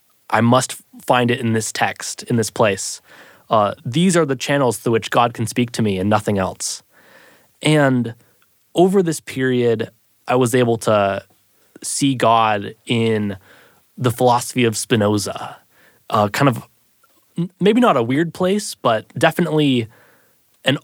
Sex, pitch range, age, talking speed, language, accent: male, 110-135 Hz, 20-39, 145 wpm, English, American